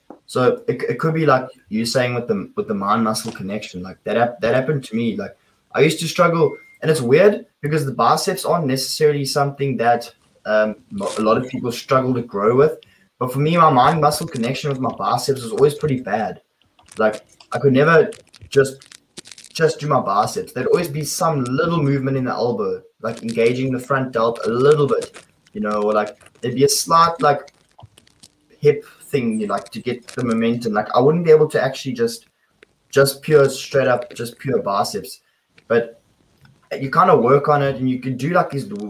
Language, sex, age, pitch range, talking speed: English, male, 20-39, 115-155 Hz, 200 wpm